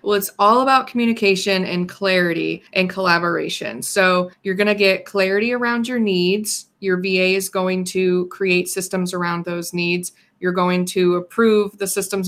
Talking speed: 160 wpm